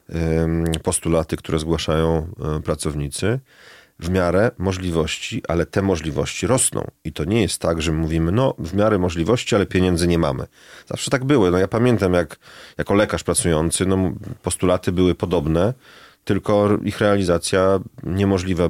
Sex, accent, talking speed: male, native, 135 wpm